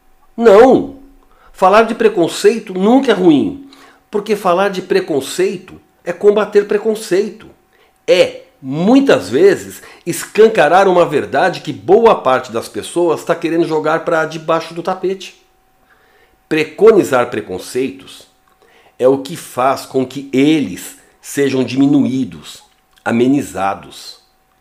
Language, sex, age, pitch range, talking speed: Portuguese, male, 60-79, 135-220 Hz, 105 wpm